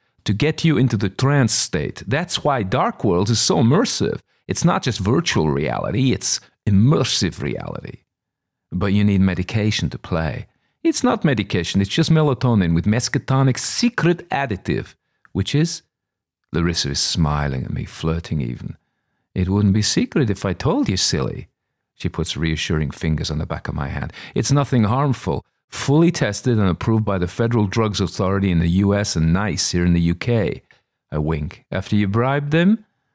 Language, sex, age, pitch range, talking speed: English, male, 50-69, 80-130 Hz, 170 wpm